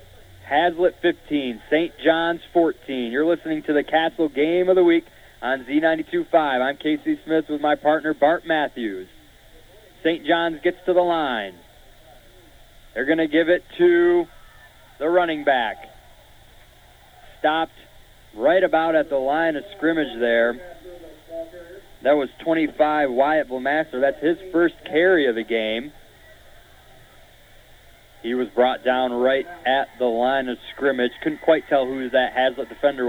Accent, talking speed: American, 140 wpm